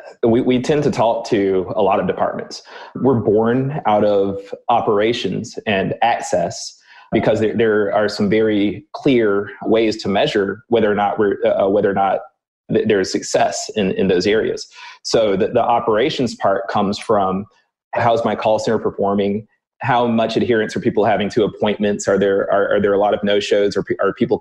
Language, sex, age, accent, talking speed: English, male, 20-39, American, 190 wpm